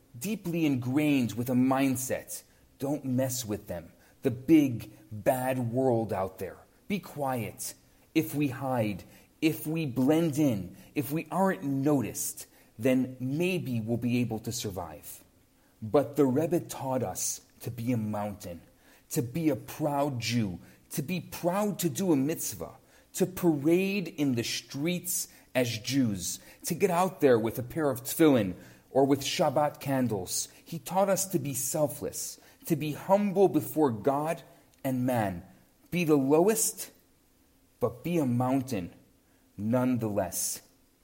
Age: 40-59